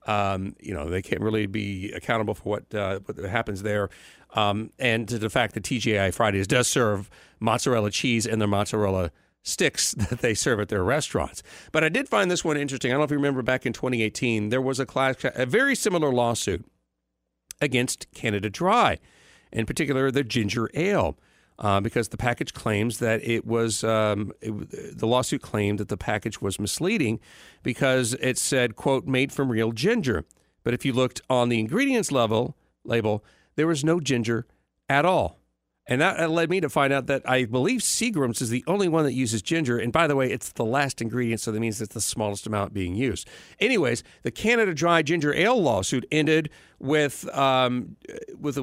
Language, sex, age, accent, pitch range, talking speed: English, male, 50-69, American, 110-140 Hz, 190 wpm